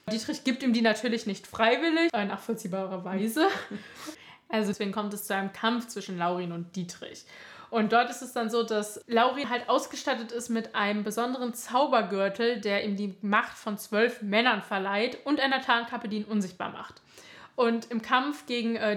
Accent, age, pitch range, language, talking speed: German, 20-39, 205-245 Hz, German, 175 wpm